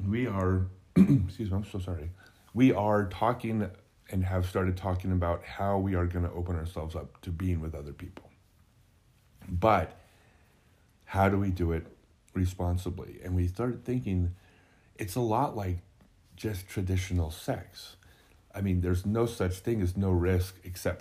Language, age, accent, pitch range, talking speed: English, 30-49, American, 85-100 Hz, 160 wpm